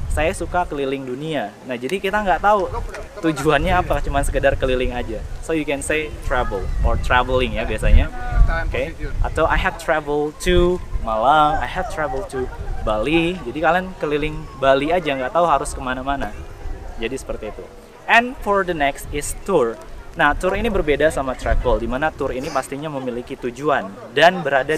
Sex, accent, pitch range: male, native, 125-170 Hz